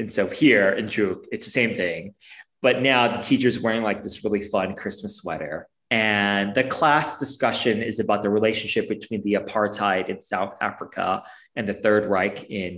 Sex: male